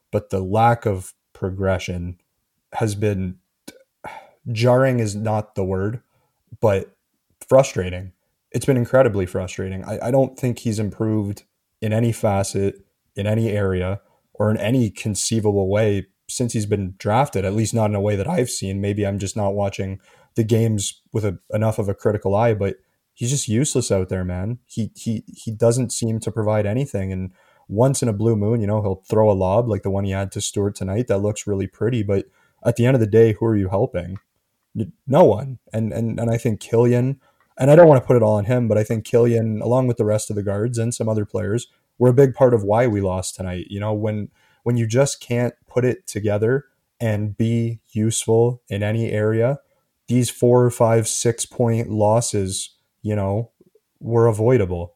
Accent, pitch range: American, 100-120 Hz